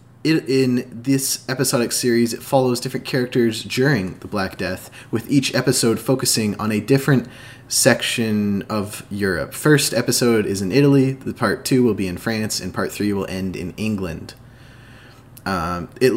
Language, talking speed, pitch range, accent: English, 160 wpm, 100-125 Hz, American